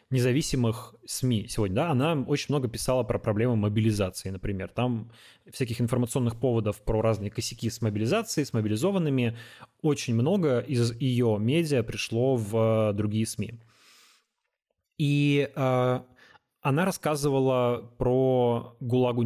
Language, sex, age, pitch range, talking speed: Russian, male, 20-39, 110-130 Hz, 120 wpm